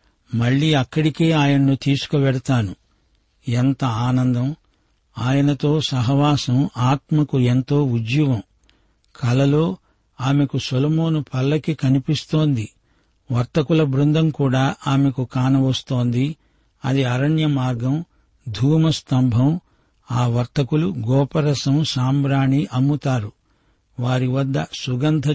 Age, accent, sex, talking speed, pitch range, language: 60-79, native, male, 80 wpm, 125-150 Hz, Telugu